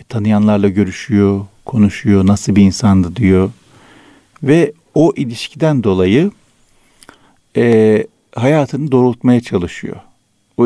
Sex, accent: male, native